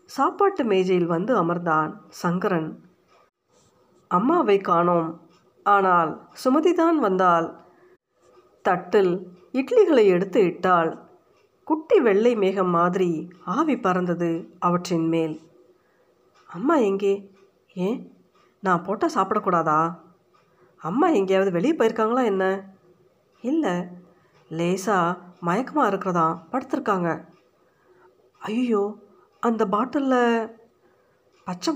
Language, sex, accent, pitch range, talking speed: Tamil, female, native, 175-230 Hz, 80 wpm